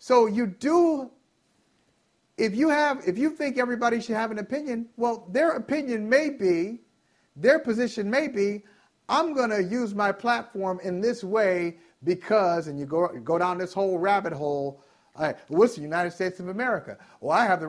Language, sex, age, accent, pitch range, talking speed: English, male, 40-59, American, 170-240 Hz, 185 wpm